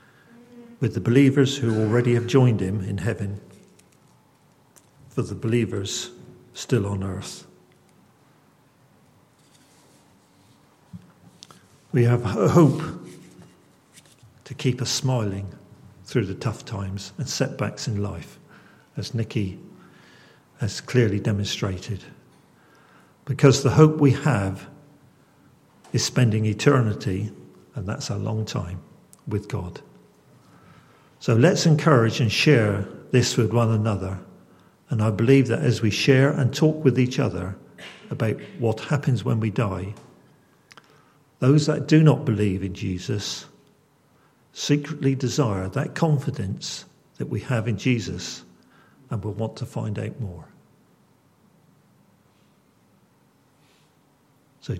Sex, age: male, 50-69